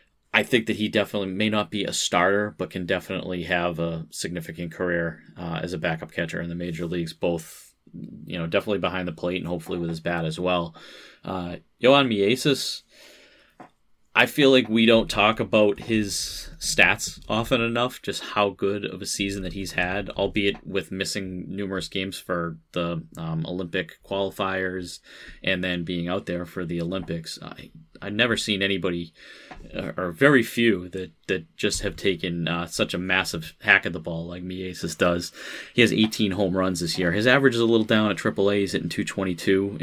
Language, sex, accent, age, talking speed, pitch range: English, male, American, 30-49, 185 wpm, 85-100 Hz